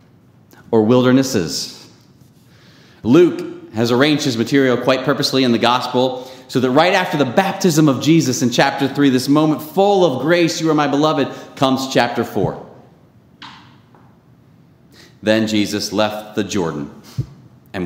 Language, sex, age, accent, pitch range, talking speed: English, male, 30-49, American, 110-130 Hz, 140 wpm